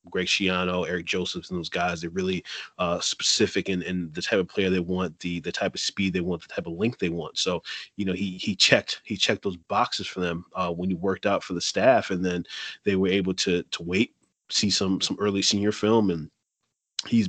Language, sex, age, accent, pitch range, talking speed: English, male, 20-39, American, 90-105 Hz, 235 wpm